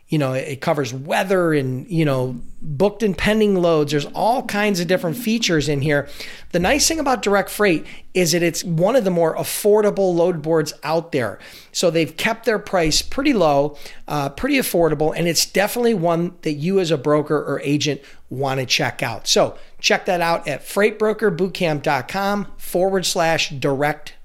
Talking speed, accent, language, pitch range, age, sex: 180 wpm, American, English, 160-210 Hz, 40-59, male